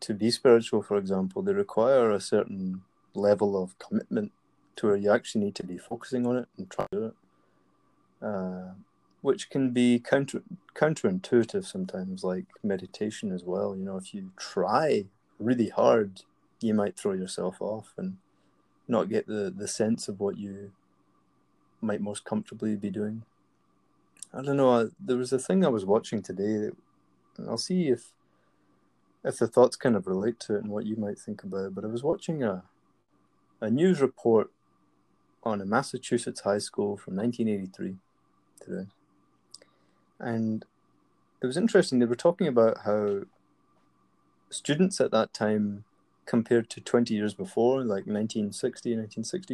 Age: 20-39